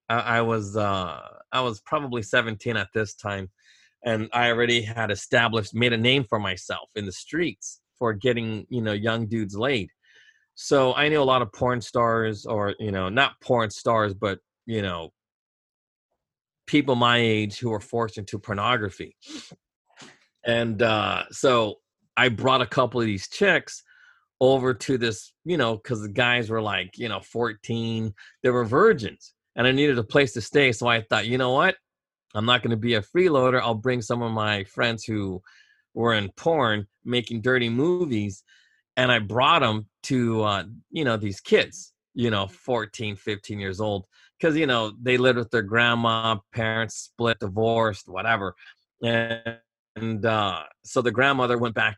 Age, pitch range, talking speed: 30-49, 105-125 Hz, 175 wpm